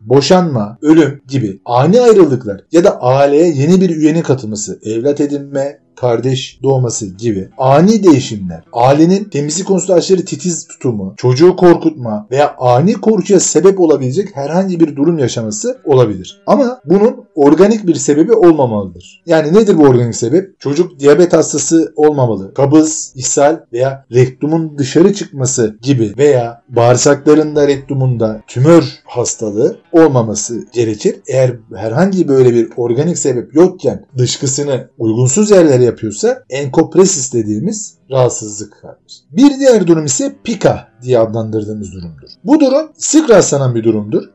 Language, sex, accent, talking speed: Turkish, male, native, 130 wpm